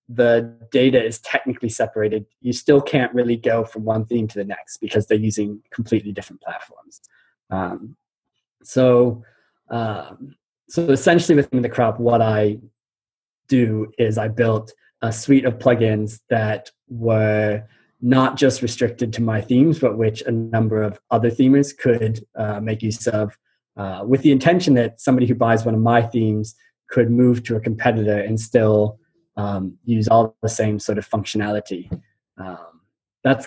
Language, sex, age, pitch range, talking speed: English, male, 20-39, 110-125 Hz, 160 wpm